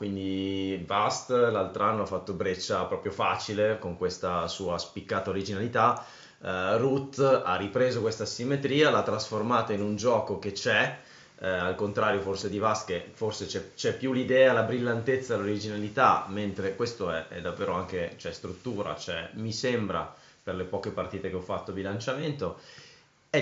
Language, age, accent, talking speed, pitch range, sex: Italian, 20-39, native, 160 wpm, 95-125 Hz, male